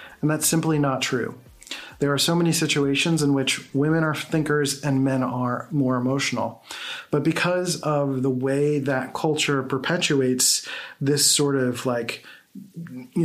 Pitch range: 130-155 Hz